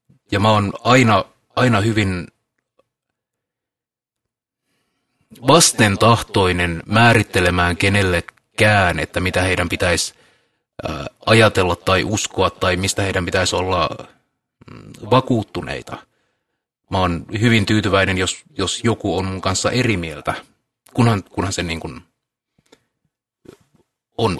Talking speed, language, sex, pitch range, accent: 95 wpm, Finnish, male, 90-120 Hz, native